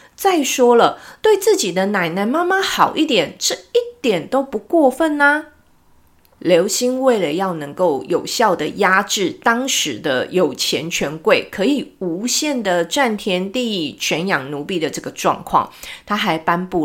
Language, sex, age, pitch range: Chinese, female, 30-49, 180-265 Hz